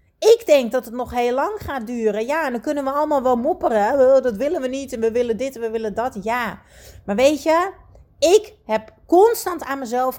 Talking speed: 230 wpm